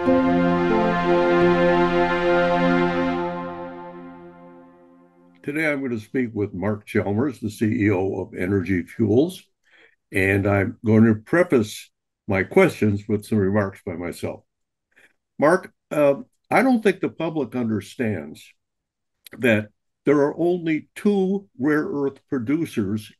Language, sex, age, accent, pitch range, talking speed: English, male, 60-79, American, 95-130 Hz, 105 wpm